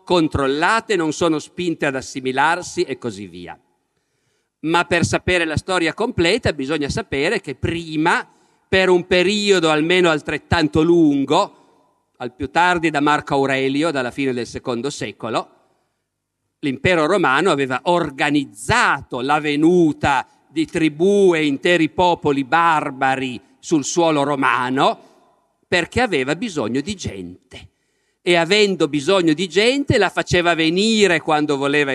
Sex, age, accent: male, 50-69, native